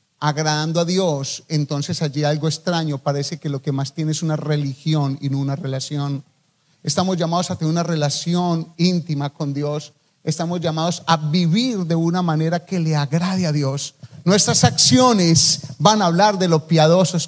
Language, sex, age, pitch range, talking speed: English, male, 40-59, 150-185 Hz, 170 wpm